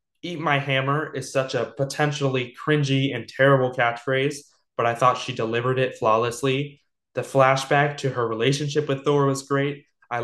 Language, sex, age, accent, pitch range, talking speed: English, male, 20-39, American, 120-140 Hz, 165 wpm